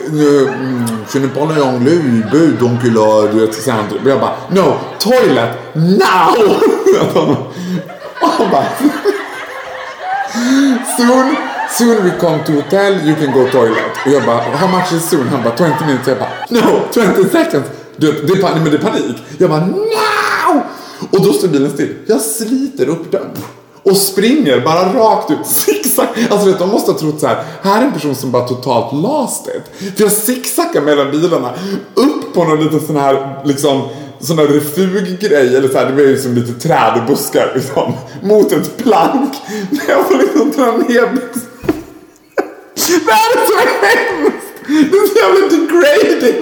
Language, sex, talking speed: Swedish, male, 155 wpm